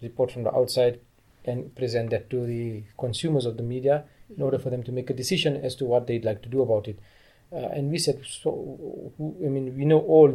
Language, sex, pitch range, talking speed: English, male, 120-140 Hz, 225 wpm